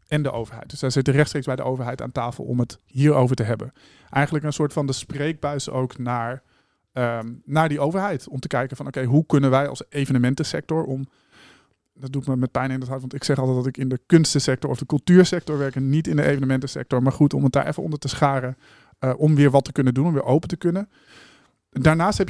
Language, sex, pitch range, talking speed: Dutch, male, 130-150 Hz, 235 wpm